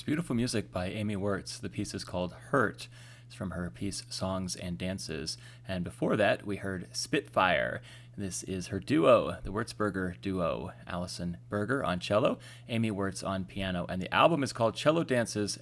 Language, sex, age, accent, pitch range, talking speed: English, male, 30-49, American, 95-120 Hz, 175 wpm